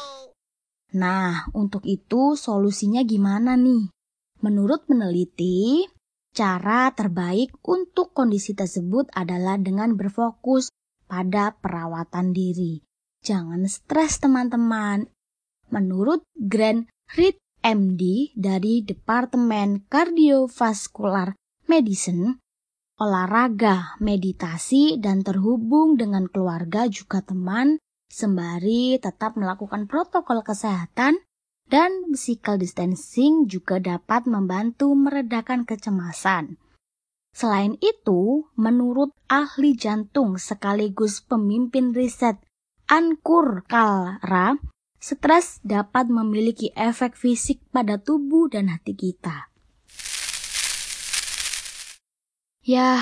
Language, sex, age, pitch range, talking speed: Indonesian, female, 20-39, 195-260 Hz, 80 wpm